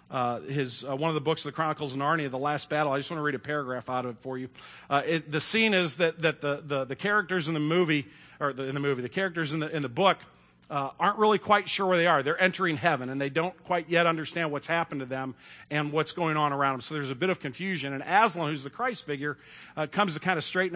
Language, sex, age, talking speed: English, male, 40-59, 285 wpm